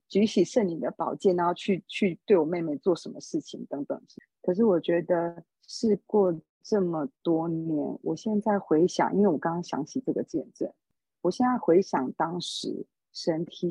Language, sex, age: Chinese, female, 50-69